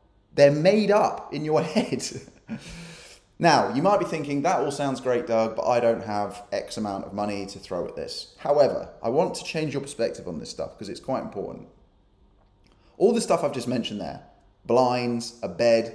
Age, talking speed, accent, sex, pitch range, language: 20-39, 195 wpm, British, male, 110-140 Hz, English